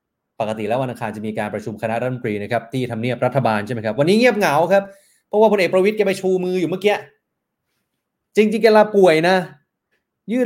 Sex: male